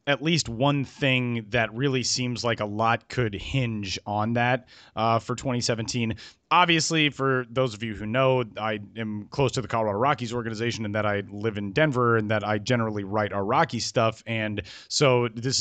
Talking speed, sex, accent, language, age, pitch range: 190 wpm, male, American, English, 30-49, 110-135 Hz